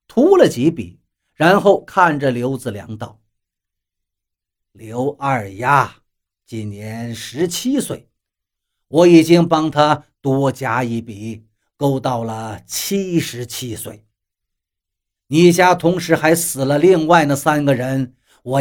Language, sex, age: Chinese, male, 50-69